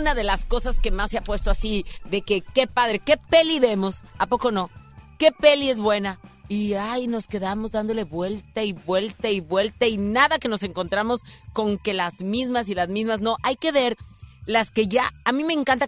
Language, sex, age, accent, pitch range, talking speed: Spanish, female, 40-59, Mexican, 200-245 Hz, 215 wpm